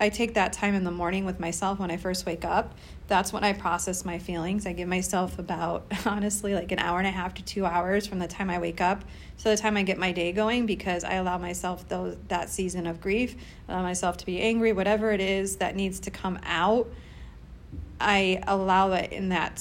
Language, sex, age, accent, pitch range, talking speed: English, female, 30-49, American, 175-210 Hz, 230 wpm